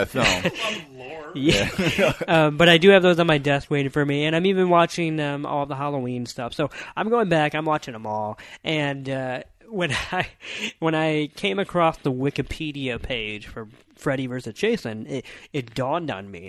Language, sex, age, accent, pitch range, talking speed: English, male, 20-39, American, 110-155 Hz, 190 wpm